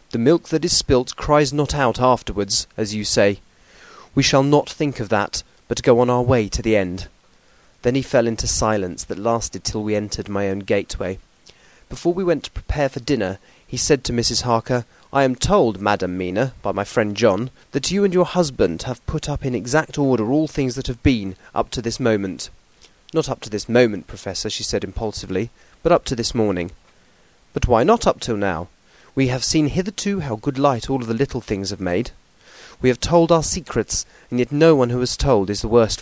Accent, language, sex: British, English, male